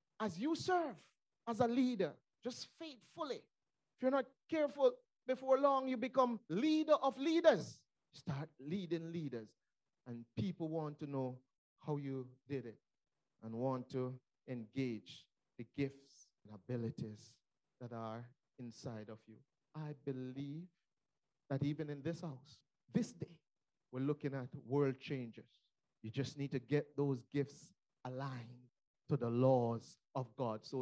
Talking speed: 140 wpm